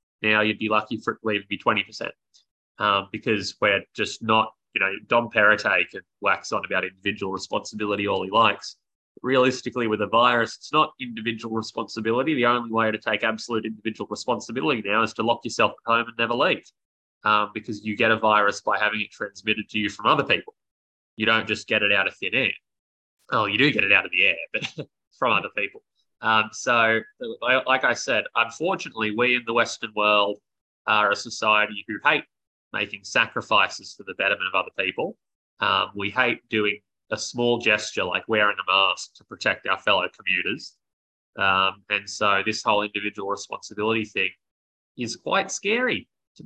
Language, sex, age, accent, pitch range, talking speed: English, male, 20-39, Australian, 105-120 Hz, 185 wpm